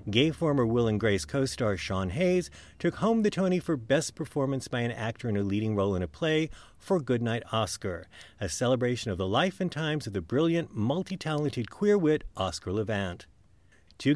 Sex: male